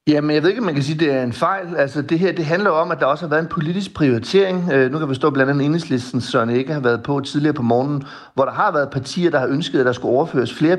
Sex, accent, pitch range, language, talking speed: male, native, 125-150 Hz, Danish, 315 wpm